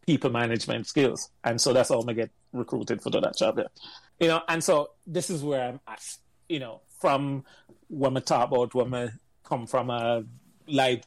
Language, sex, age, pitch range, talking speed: English, male, 30-49, 120-135 Hz, 195 wpm